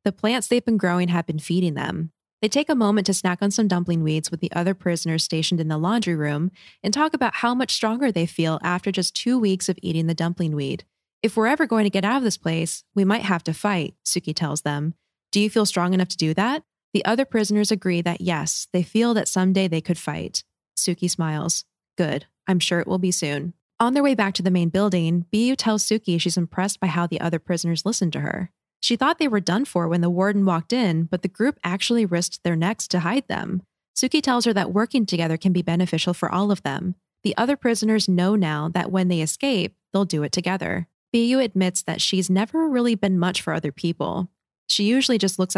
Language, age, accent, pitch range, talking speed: English, 20-39, American, 170-220 Hz, 230 wpm